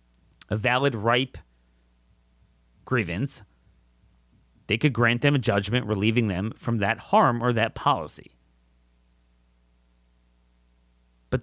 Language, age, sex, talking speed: English, 30-49, male, 100 wpm